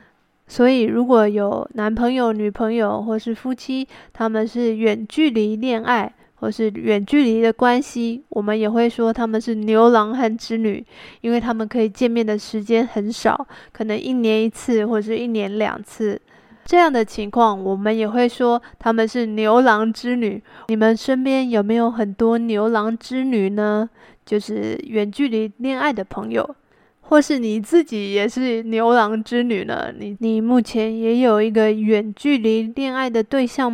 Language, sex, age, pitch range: Chinese, female, 20-39, 215-245 Hz